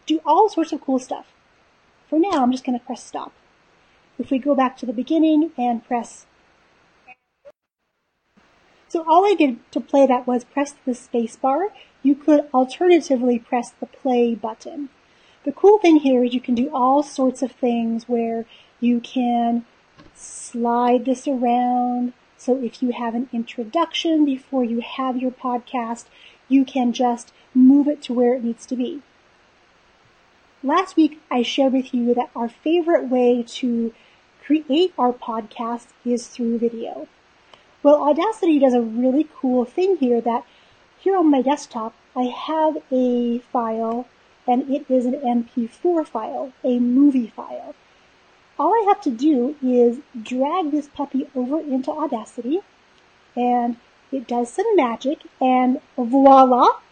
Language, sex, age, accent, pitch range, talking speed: English, female, 40-59, American, 245-295 Hz, 150 wpm